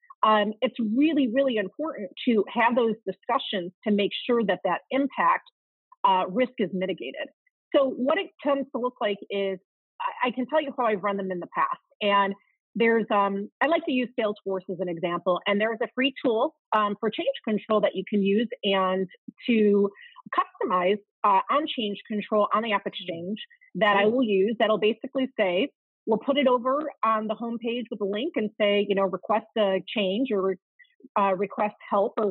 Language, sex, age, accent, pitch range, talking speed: English, female, 30-49, American, 200-265 Hz, 195 wpm